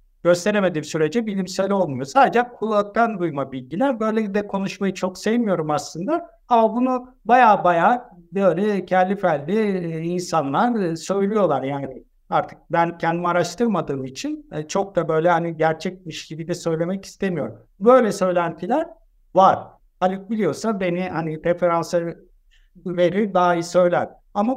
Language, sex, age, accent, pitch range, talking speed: Turkish, male, 60-79, native, 160-210 Hz, 125 wpm